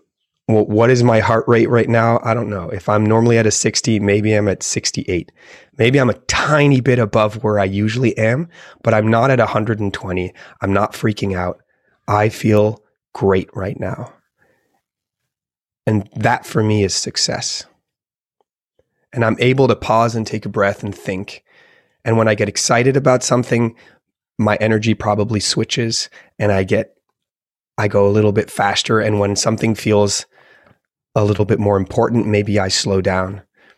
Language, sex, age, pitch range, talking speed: English, male, 30-49, 105-120 Hz, 165 wpm